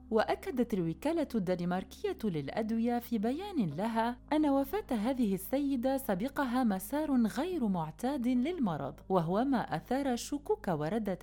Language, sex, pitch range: Arabic, female, 175-260 Hz